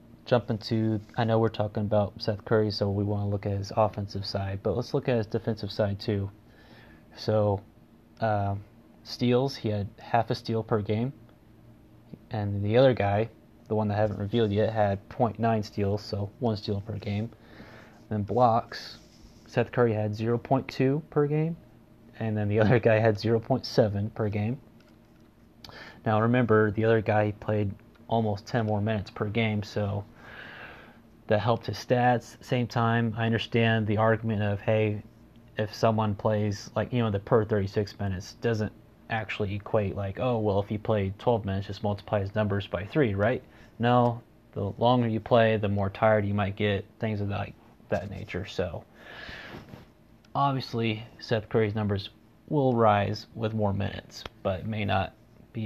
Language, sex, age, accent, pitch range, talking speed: English, male, 30-49, American, 105-115 Hz, 170 wpm